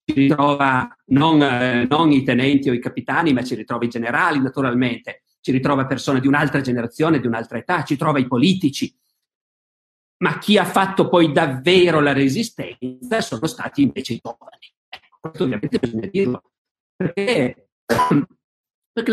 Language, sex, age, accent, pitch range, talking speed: Italian, male, 50-69, native, 135-210 Hz, 145 wpm